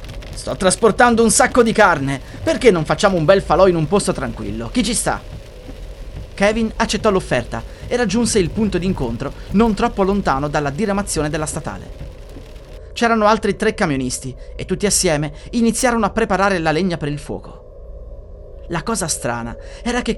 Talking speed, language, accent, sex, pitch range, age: 160 wpm, Italian, native, male, 125-205 Hz, 30-49